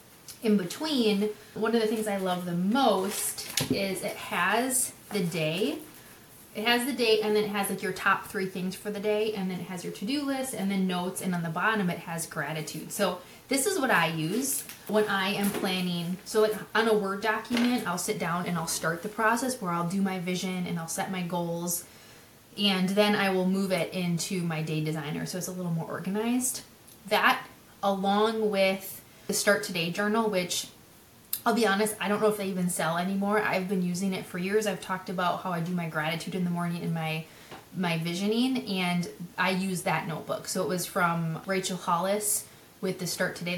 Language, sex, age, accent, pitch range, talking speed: English, female, 20-39, American, 180-215 Hz, 210 wpm